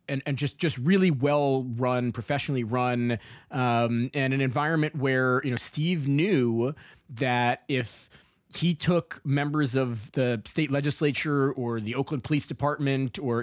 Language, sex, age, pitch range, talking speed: English, male, 20-39, 120-145 Hz, 150 wpm